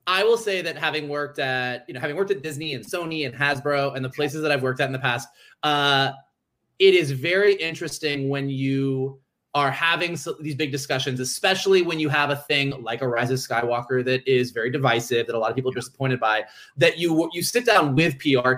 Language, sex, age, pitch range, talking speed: English, male, 20-39, 130-165 Hz, 225 wpm